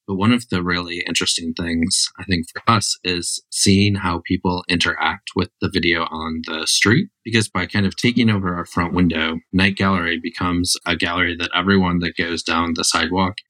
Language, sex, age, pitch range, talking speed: English, male, 30-49, 85-100 Hz, 190 wpm